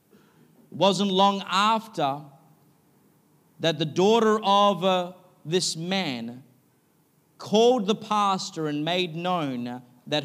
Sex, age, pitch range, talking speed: male, 40-59, 165-225 Hz, 105 wpm